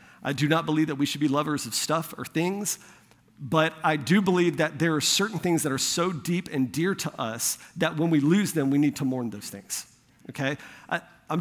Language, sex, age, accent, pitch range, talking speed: English, male, 50-69, American, 145-190 Hz, 225 wpm